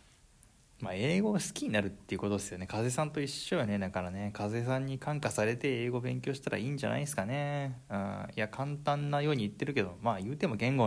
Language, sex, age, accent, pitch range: Japanese, male, 20-39, native, 95-125 Hz